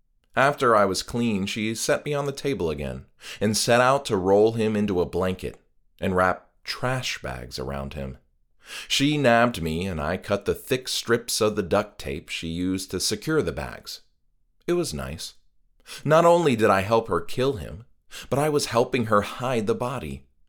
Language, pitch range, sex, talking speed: English, 75-125 Hz, male, 185 wpm